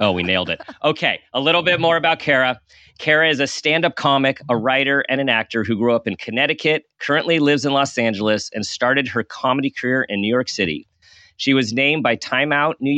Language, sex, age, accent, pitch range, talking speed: English, male, 40-59, American, 110-140 Hz, 215 wpm